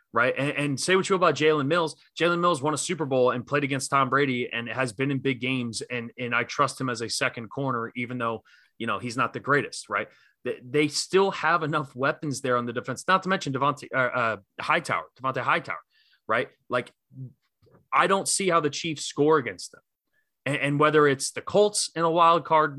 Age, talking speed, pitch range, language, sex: 20-39, 225 wpm, 130-160 Hz, English, male